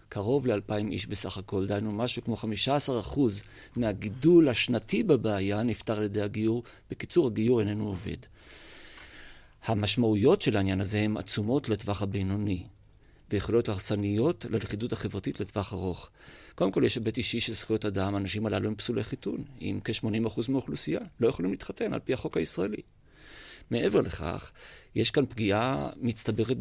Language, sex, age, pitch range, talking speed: Hebrew, male, 50-69, 105-125 Hz, 145 wpm